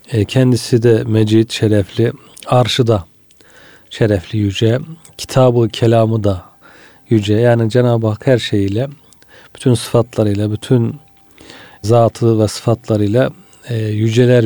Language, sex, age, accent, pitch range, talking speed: Turkish, male, 40-59, native, 110-120 Hz, 100 wpm